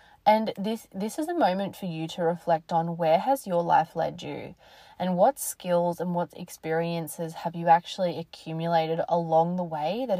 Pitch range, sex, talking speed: 160-190 Hz, female, 180 wpm